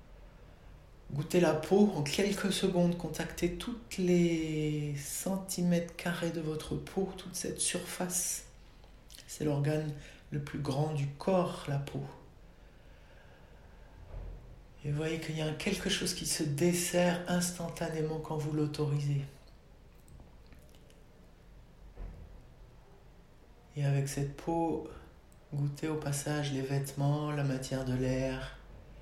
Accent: French